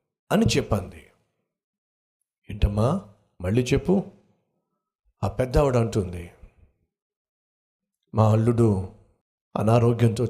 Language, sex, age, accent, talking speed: Telugu, male, 60-79, native, 65 wpm